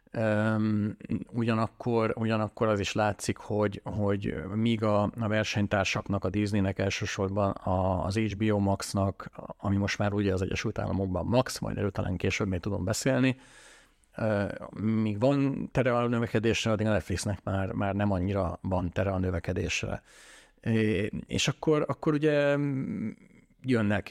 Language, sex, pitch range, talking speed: Hungarian, male, 95-110 Hz, 140 wpm